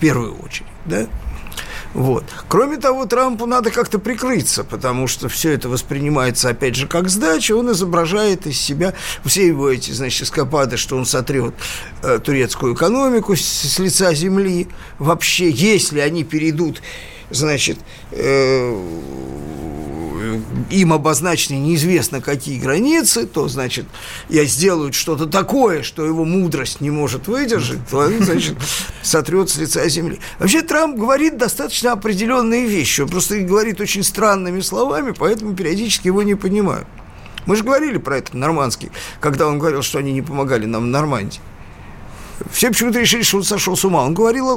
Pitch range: 140-215 Hz